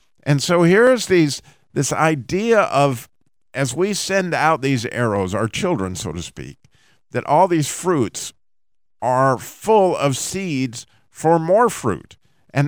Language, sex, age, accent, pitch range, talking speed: English, male, 50-69, American, 125-165 Hz, 140 wpm